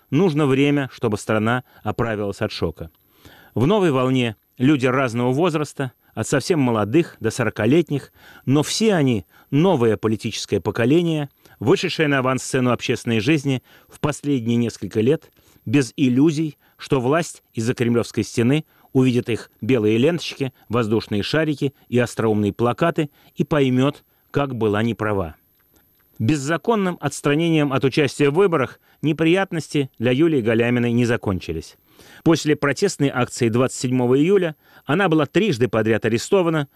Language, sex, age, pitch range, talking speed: Russian, male, 30-49, 115-150 Hz, 125 wpm